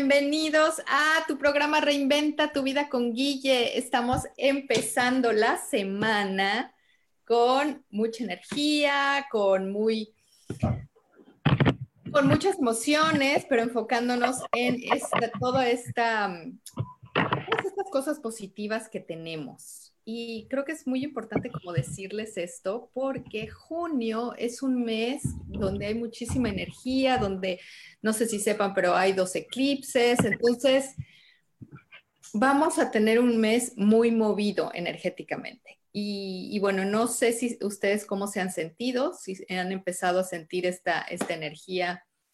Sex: female